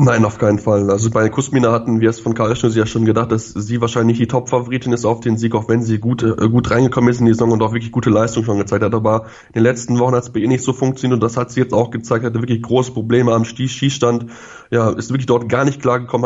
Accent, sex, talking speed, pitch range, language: German, male, 280 wpm, 115-125 Hz, German